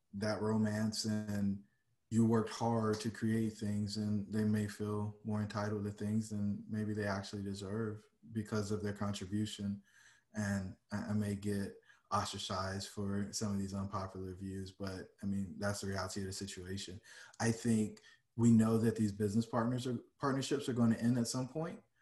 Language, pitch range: English, 100-115 Hz